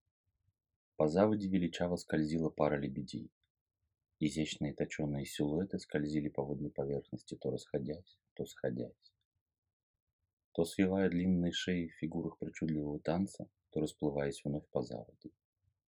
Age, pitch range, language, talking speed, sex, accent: 30-49, 75-95 Hz, Russian, 115 wpm, male, native